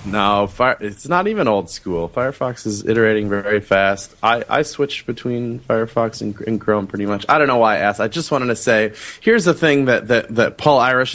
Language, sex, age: English, male, 30-49